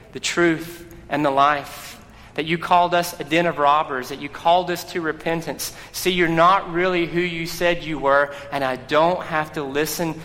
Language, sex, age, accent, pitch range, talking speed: English, male, 30-49, American, 125-165 Hz, 200 wpm